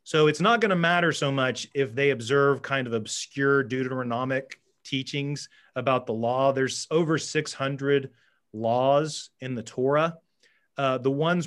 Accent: American